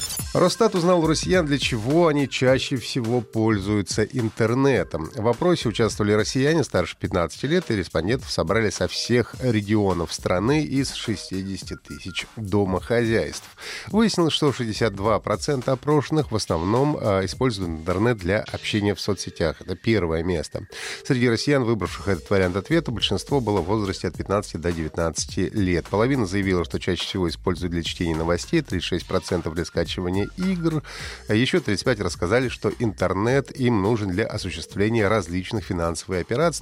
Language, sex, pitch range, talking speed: Russian, male, 90-130 Hz, 140 wpm